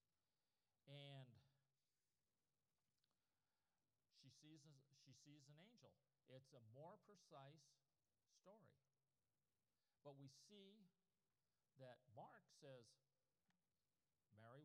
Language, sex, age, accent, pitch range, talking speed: English, male, 50-69, American, 130-160 Hz, 80 wpm